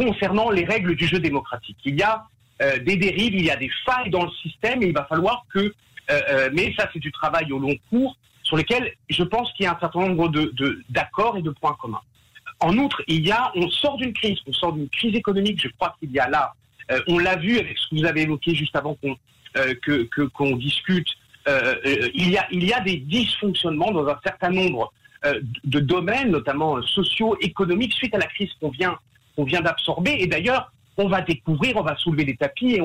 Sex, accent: male, French